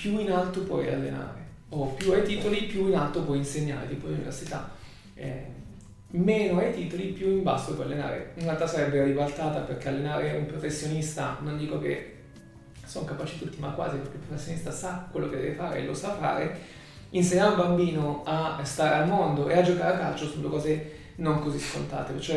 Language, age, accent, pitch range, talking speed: Italian, 20-39, native, 140-175 Hz, 190 wpm